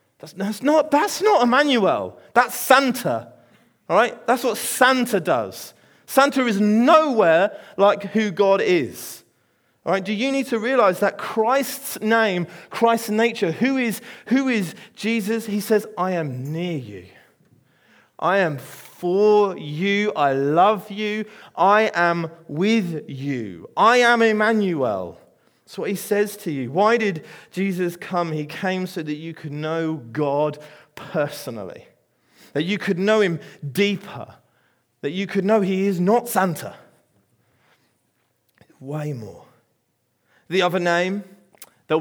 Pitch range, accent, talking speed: 160-215 Hz, British, 135 wpm